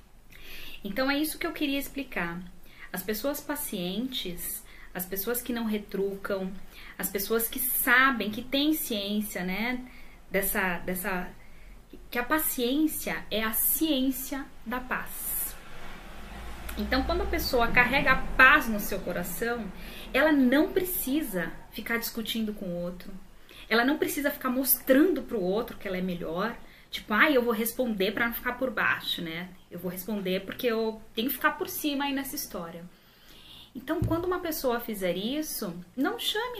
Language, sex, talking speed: Portuguese, female, 155 wpm